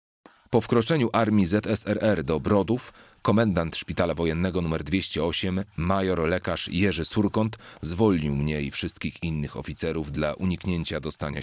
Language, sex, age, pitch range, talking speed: Polish, male, 40-59, 75-100 Hz, 125 wpm